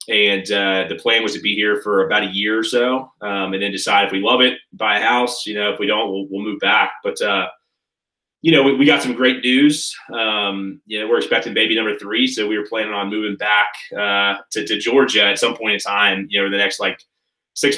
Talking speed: 255 wpm